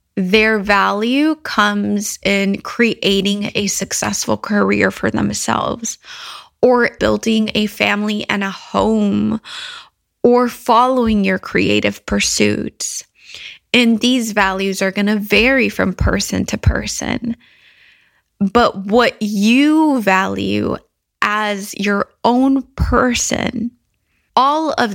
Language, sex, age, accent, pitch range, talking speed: English, female, 20-39, American, 200-235 Hz, 105 wpm